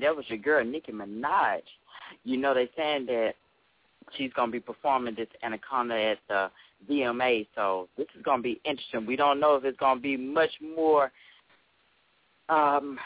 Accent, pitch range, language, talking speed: American, 120-170 Hz, English, 165 wpm